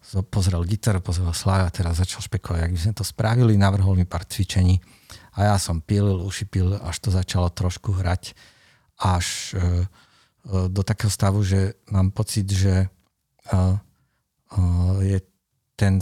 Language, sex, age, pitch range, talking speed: Slovak, male, 50-69, 95-110 Hz, 135 wpm